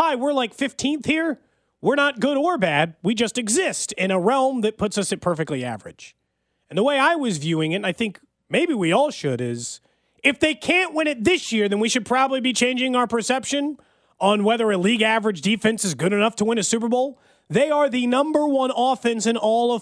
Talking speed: 225 wpm